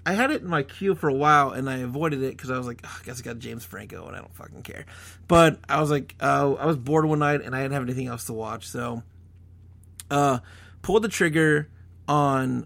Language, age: English, 30-49